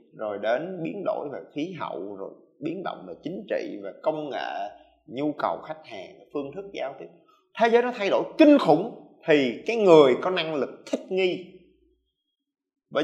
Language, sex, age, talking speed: Vietnamese, male, 20-39, 185 wpm